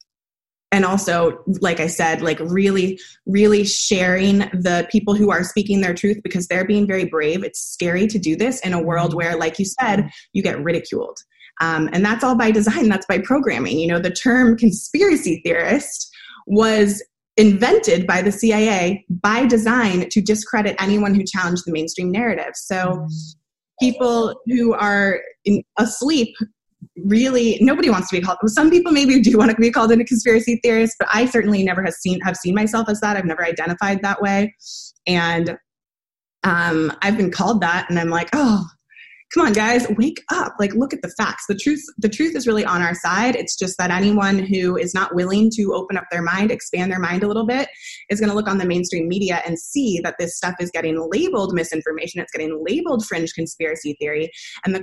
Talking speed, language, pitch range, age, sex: 195 wpm, English, 175-225 Hz, 20-39, female